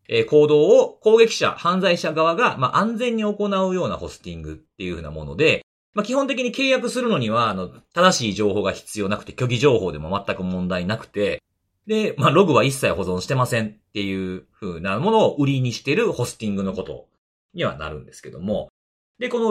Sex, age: male, 40-59